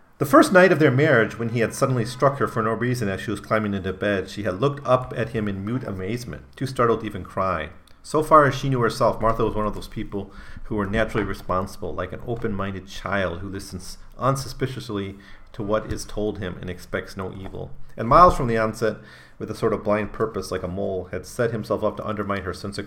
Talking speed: 235 wpm